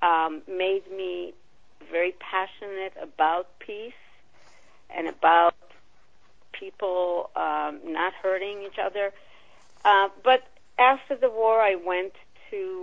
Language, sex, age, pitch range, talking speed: English, female, 50-69, 165-225 Hz, 110 wpm